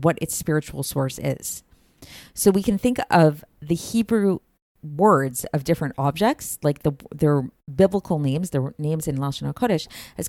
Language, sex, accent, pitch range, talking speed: English, female, American, 140-175 Hz, 155 wpm